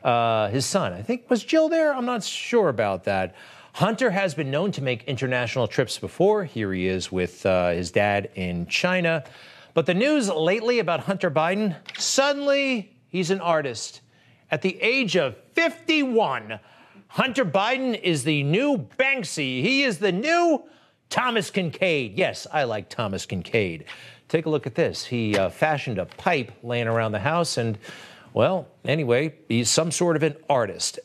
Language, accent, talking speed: English, American, 165 wpm